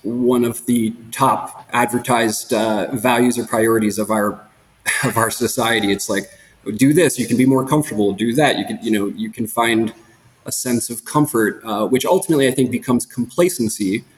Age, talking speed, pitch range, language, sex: 20-39, 180 wpm, 105-125 Hz, English, male